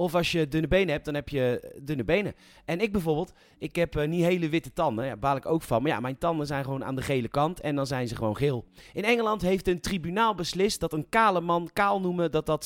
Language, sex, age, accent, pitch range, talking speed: Dutch, male, 40-59, Dutch, 145-195 Hz, 265 wpm